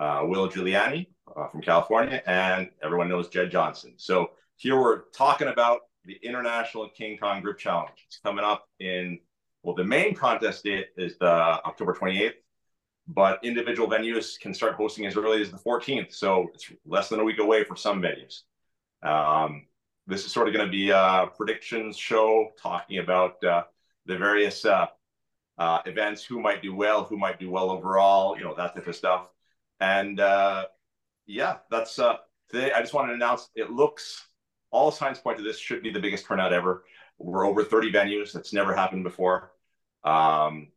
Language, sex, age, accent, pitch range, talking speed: English, male, 40-59, American, 90-110 Hz, 180 wpm